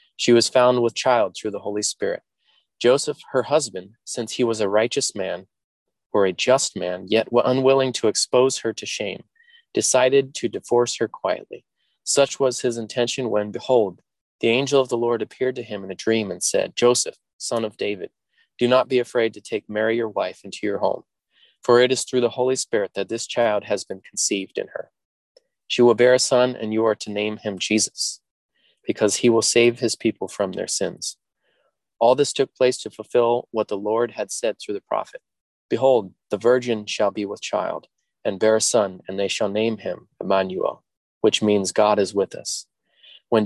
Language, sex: English, male